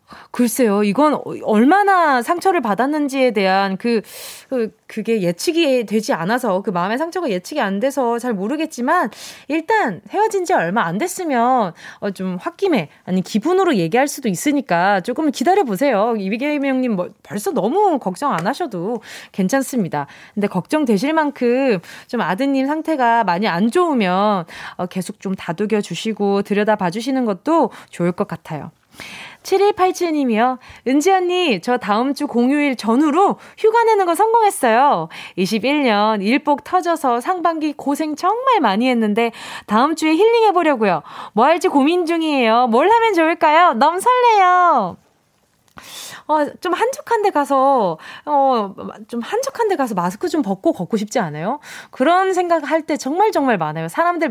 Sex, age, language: female, 20-39, Korean